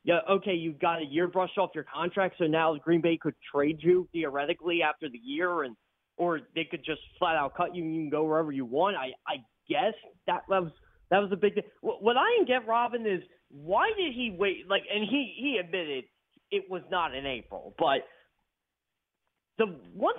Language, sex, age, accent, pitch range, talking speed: English, male, 30-49, American, 150-200 Hz, 210 wpm